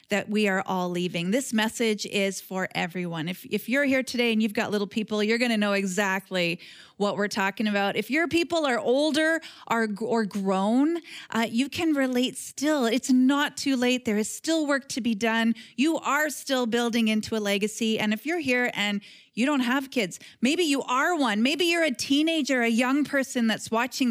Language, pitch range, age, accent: English, 200-260 Hz, 30-49, American